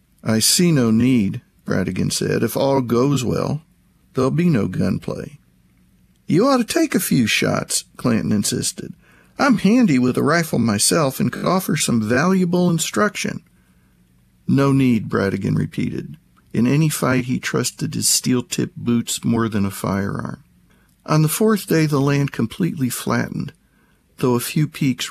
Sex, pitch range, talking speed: male, 110-160 Hz, 150 wpm